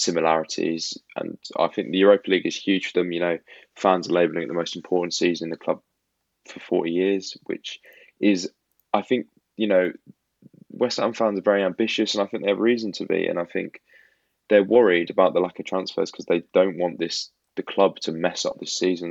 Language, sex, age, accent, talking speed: English, male, 20-39, British, 215 wpm